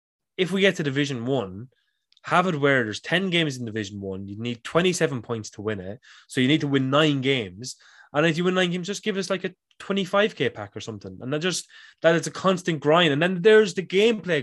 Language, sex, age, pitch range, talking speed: English, male, 20-39, 110-160 Hz, 235 wpm